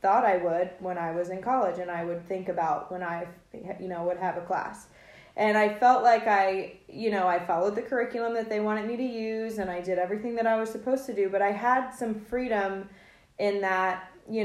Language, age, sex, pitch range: English, 20-39, female, 180-215 Hz